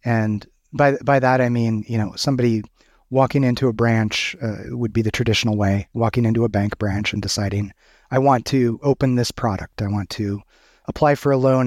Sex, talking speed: male, 200 wpm